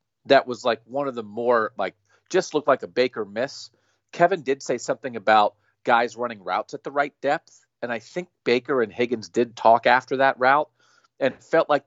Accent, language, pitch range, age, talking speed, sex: American, English, 115-150 Hz, 40-59, 205 wpm, male